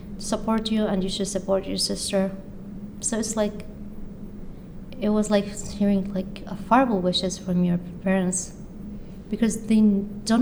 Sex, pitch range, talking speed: female, 195-220 Hz, 145 wpm